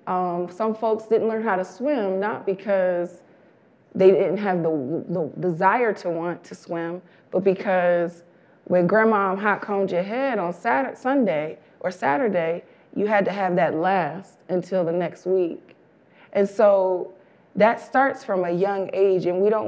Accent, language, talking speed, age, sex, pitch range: American, English, 160 wpm, 30-49, female, 175-210 Hz